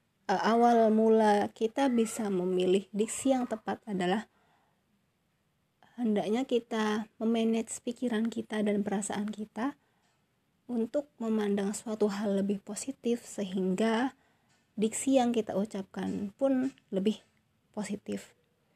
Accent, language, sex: native, Indonesian, female